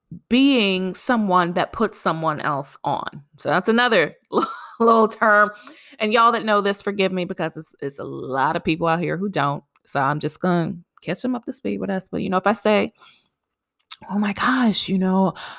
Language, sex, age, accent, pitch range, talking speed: English, female, 20-39, American, 160-210 Hz, 205 wpm